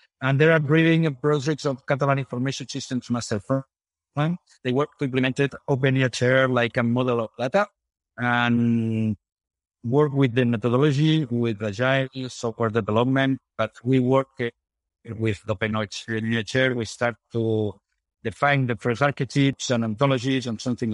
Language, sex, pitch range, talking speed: English, male, 115-140 Hz, 140 wpm